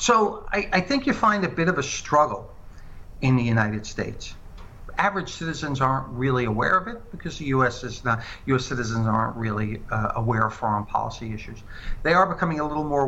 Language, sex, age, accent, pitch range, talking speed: English, male, 60-79, American, 110-145 Hz, 195 wpm